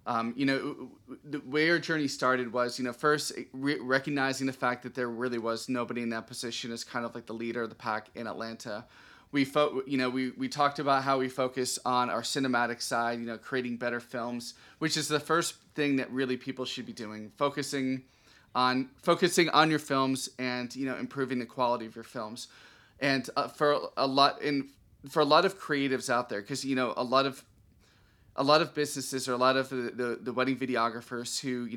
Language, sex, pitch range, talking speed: English, male, 120-135 Hz, 215 wpm